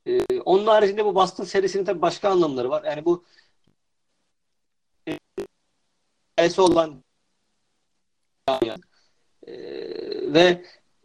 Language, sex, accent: Turkish, male, native